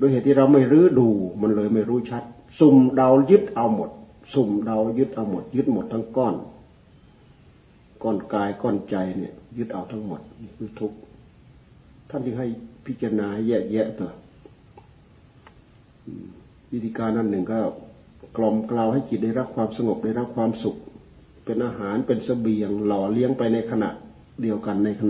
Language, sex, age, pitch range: Thai, male, 60-79, 105-130 Hz